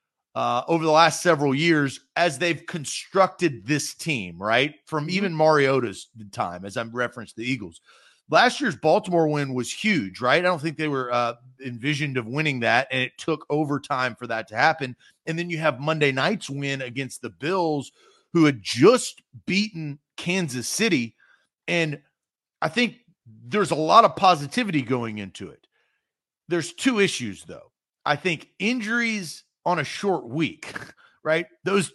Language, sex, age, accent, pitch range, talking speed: English, male, 40-59, American, 130-175 Hz, 165 wpm